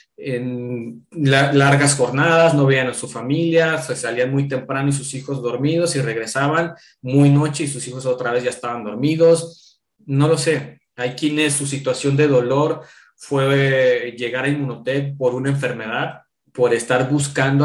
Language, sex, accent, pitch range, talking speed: Spanish, male, Mexican, 125-150 Hz, 160 wpm